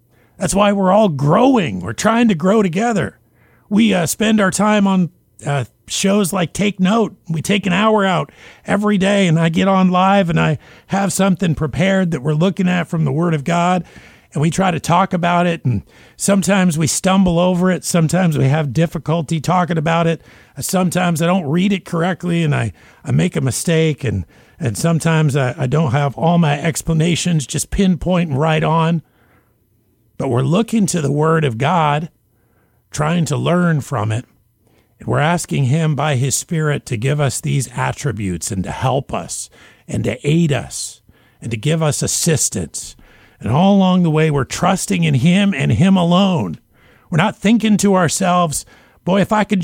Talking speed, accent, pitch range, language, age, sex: 185 wpm, American, 135-185 Hz, English, 50-69, male